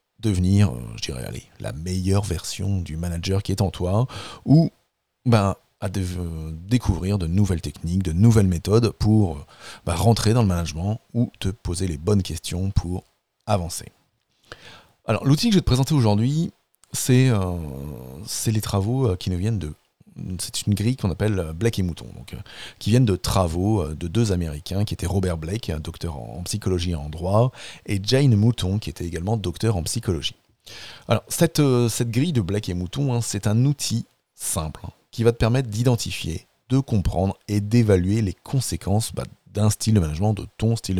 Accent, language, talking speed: French, French, 180 wpm